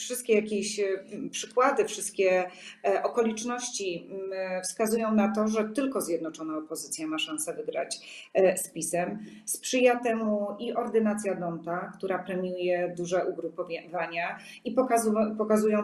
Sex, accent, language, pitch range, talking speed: female, native, Polish, 180-220 Hz, 105 wpm